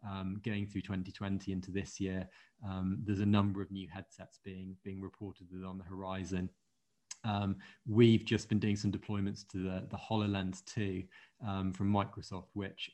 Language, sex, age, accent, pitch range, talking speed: English, male, 20-39, British, 95-105 Hz, 165 wpm